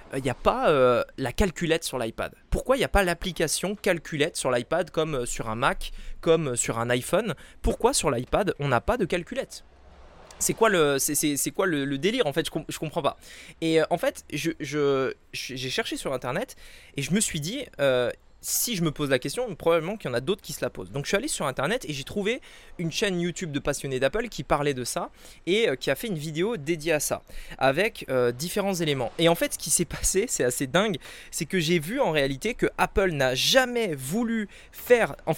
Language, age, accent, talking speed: French, 20-39, French, 230 wpm